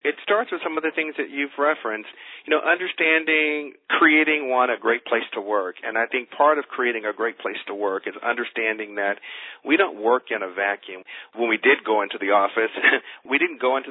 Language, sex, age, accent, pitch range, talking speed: English, male, 40-59, American, 110-135 Hz, 220 wpm